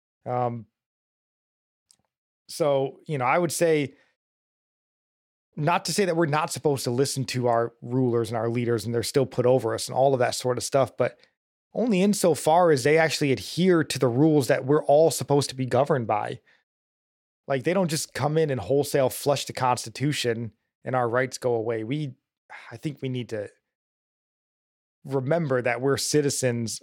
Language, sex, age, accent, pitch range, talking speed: English, male, 20-39, American, 120-145 Hz, 180 wpm